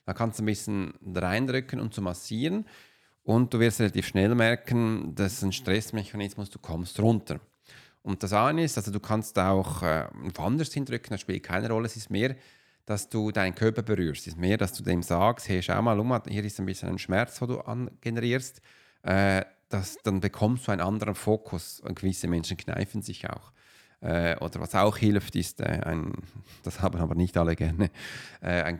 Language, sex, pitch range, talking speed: German, male, 95-125 Hz, 200 wpm